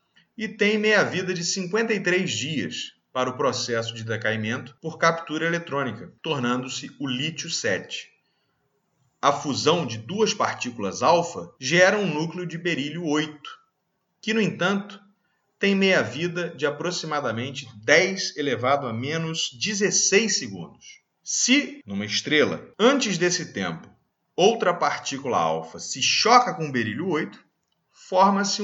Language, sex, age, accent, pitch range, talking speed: Portuguese, male, 40-59, Brazilian, 120-185 Hz, 115 wpm